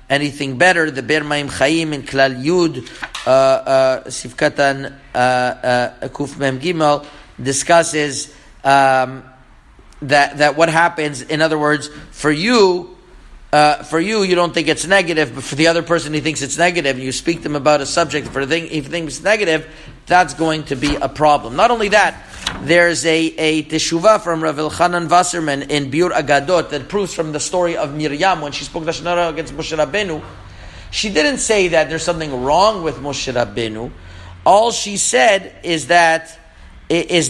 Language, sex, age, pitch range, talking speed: English, male, 50-69, 140-170 Hz, 170 wpm